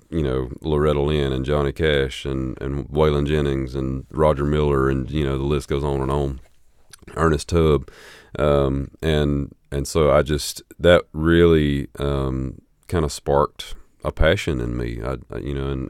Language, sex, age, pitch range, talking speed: English, male, 30-49, 65-75 Hz, 175 wpm